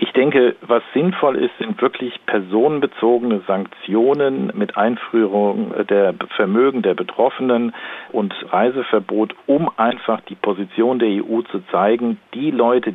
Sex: male